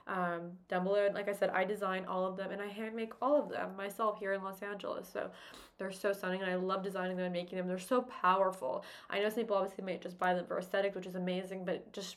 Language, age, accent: English, 20-39, American